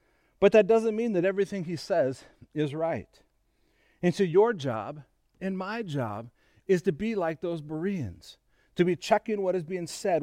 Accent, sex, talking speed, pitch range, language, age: American, male, 175 wpm, 170-220 Hz, English, 40-59